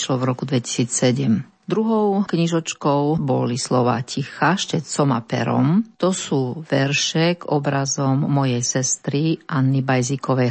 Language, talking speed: Slovak, 110 wpm